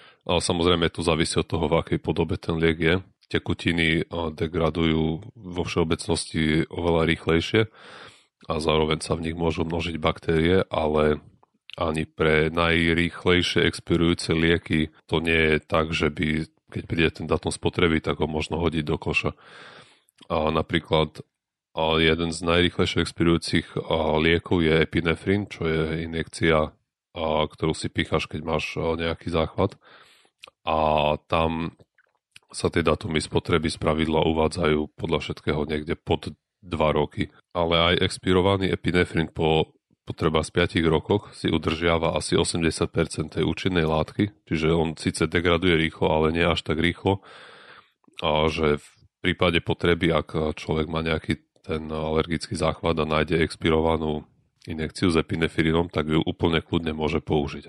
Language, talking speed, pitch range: Slovak, 135 wpm, 80-85 Hz